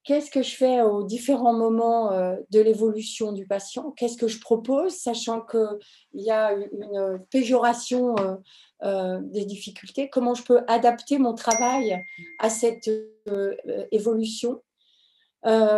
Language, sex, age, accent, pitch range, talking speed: French, female, 40-59, French, 200-240 Hz, 120 wpm